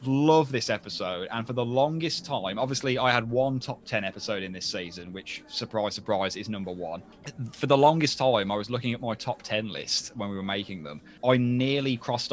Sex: male